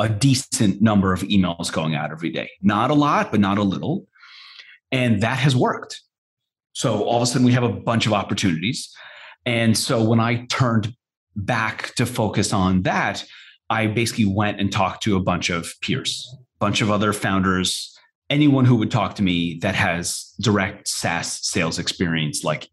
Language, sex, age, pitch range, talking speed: English, male, 30-49, 95-120 Hz, 175 wpm